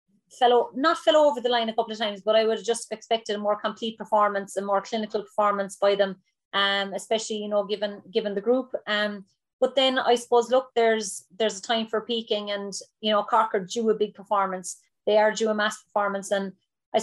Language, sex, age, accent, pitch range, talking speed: English, female, 30-49, Irish, 200-220 Hz, 220 wpm